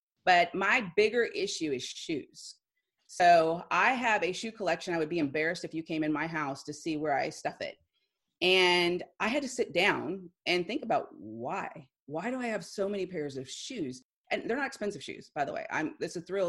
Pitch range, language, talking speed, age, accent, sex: 160-230 Hz, English, 215 wpm, 30-49, American, female